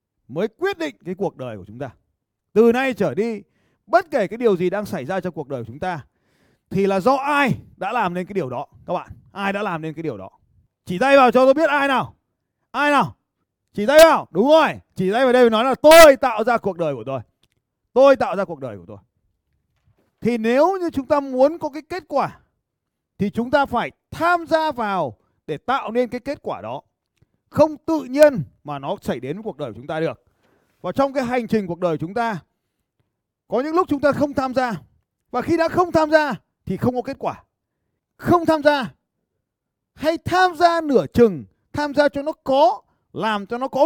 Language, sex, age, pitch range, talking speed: Vietnamese, male, 30-49, 170-280 Hz, 225 wpm